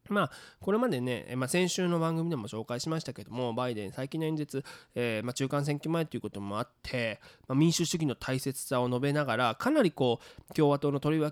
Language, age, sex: Japanese, 20-39, male